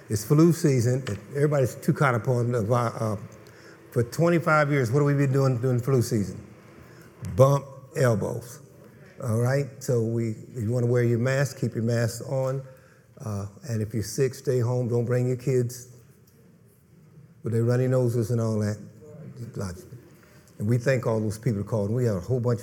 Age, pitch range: 60-79, 115-135 Hz